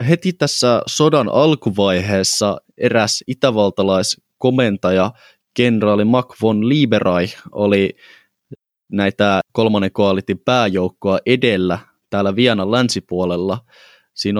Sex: male